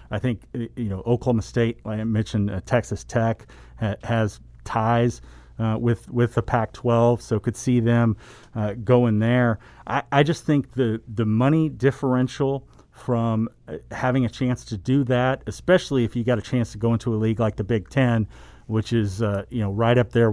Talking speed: 190 wpm